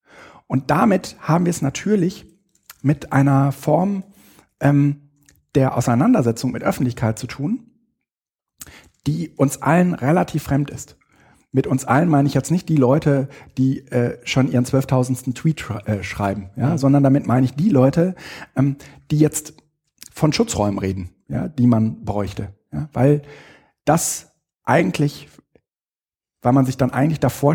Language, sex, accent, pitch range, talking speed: German, male, German, 115-140 Hz, 145 wpm